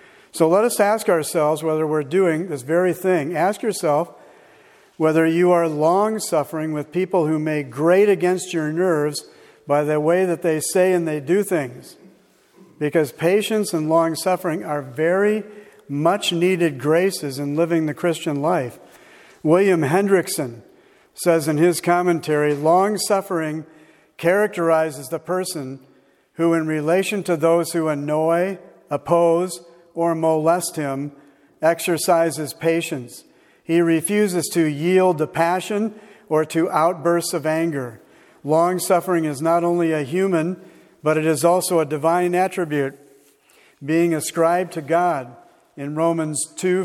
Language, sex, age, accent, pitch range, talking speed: English, male, 50-69, American, 155-180 Hz, 130 wpm